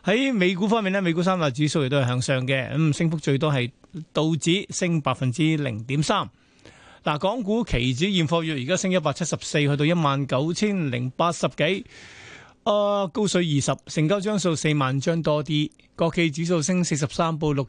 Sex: male